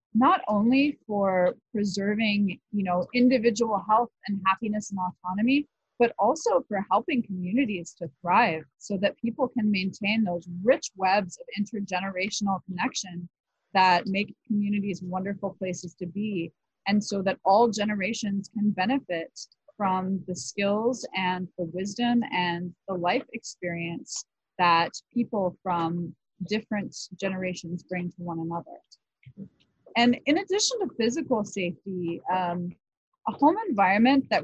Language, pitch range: English, 185-235 Hz